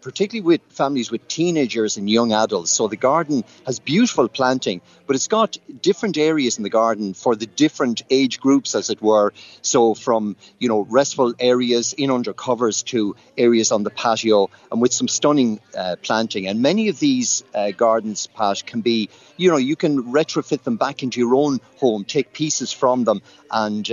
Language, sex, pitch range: English, male, 105-135 Hz